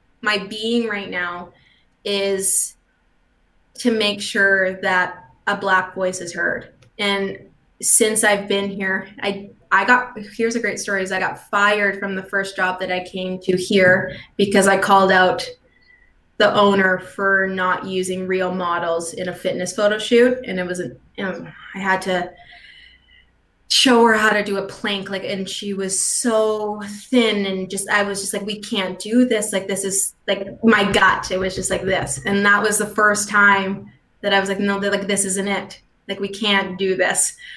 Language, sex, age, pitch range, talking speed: English, female, 20-39, 185-210 Hz, 190 wpm